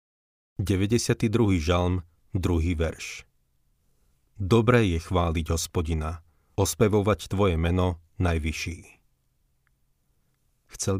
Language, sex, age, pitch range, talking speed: Slovak, male, 40-59, 85-100 Hz, 70 wpm